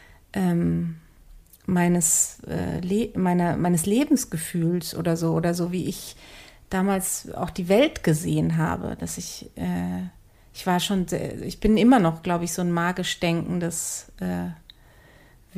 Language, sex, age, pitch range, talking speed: German, female, 30-49, 165-200 Hz, 145 wpm